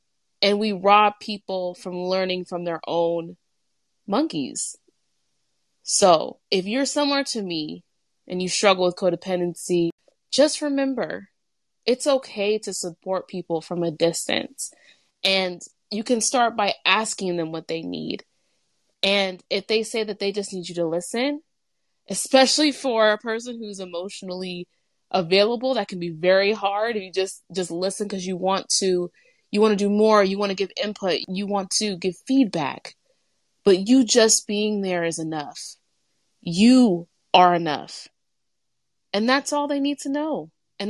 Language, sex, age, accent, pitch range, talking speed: English, female, 20-39, American, 180-225 Hz, 155 wpm